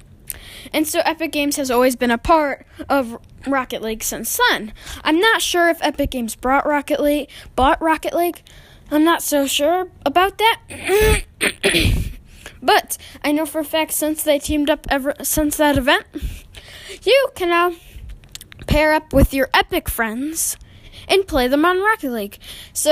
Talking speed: 160 wpm